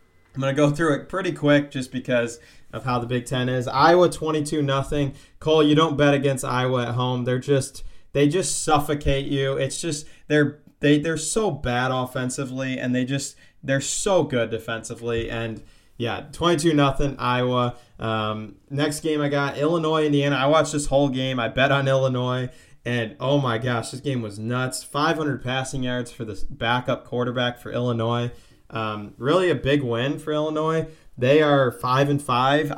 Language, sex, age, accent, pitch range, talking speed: English, male, 20-39, American, 120-145 Hz, 180 wpm